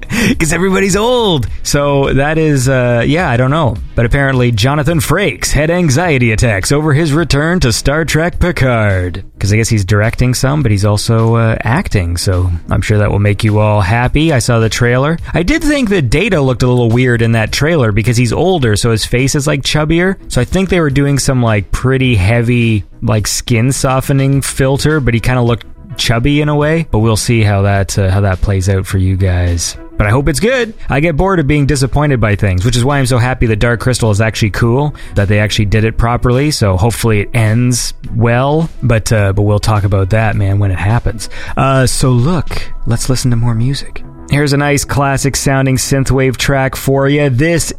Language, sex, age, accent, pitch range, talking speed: English, male, 20-39, American, 110-150 Hz, 215 wpm